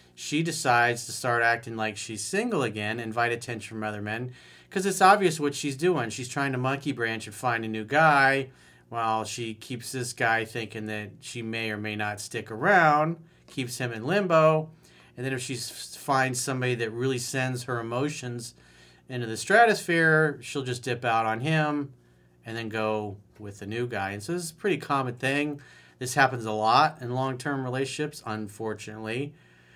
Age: 40-59